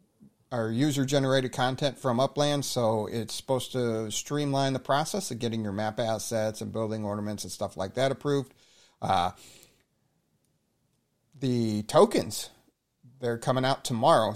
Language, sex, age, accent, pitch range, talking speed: English, male, 40-59, American, 110-130 Hz, 135 wpm